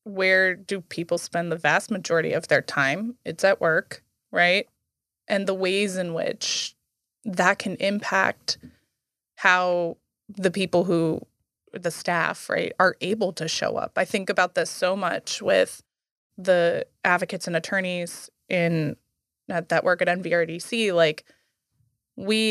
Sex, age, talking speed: female, 20-39, 140 wpm